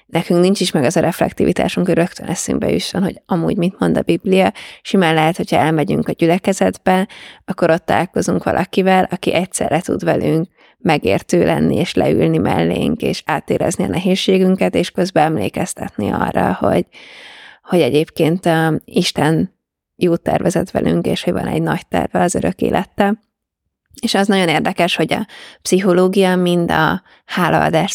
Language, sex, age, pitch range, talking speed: Hungarian, female, 20-39, 165-195 Hz, 150 wpm